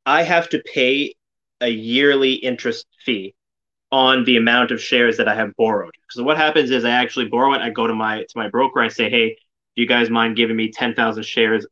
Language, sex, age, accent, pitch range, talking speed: English, male, 20-39, American, 110-125 Hz, 220 wpm